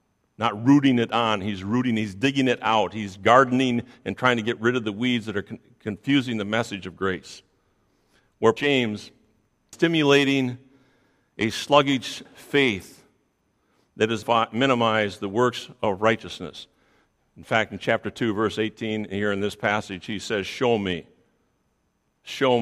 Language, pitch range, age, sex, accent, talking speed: English, 95-130 Hz, 50-69, male, American, 150 wpm